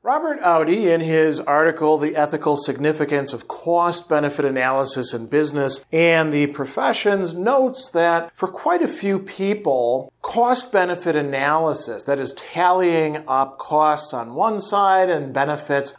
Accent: American